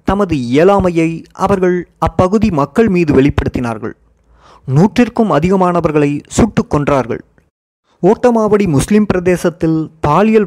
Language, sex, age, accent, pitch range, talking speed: Tamil, male, 30-49, native, 145-190 Hz, 85 wpm